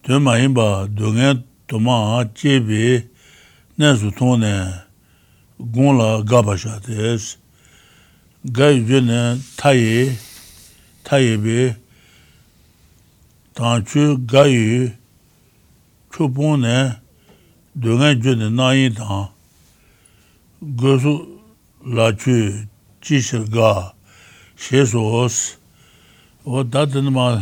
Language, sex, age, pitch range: English, male, 60-79, 105-135 Hz